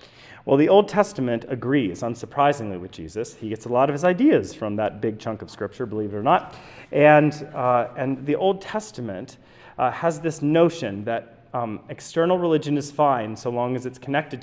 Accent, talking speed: American, 190 wpm